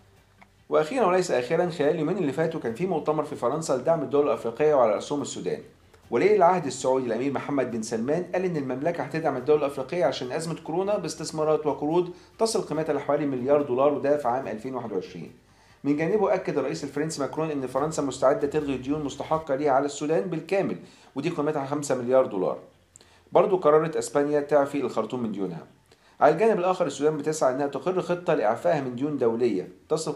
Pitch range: 125-160 Hz